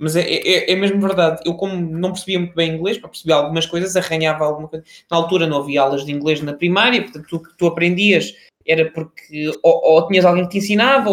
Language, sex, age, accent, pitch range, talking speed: Portuguese, male, 20-39, Portuguese, 175-240 Hz, 230 wpm